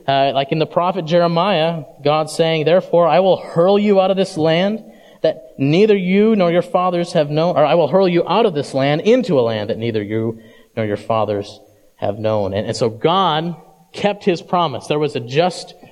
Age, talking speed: 30-49, 210 wpm